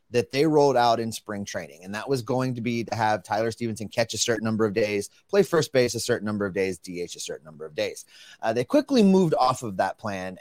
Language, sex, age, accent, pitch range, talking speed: English, male, 30-49, American, 110-145 Hz, 260 wpm